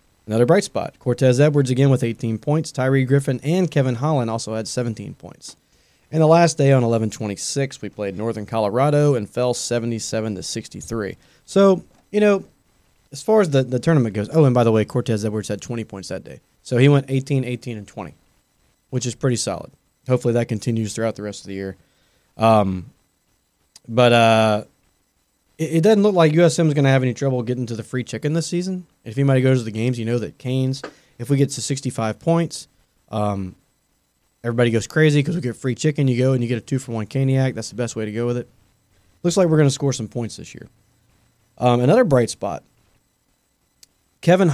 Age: 20-39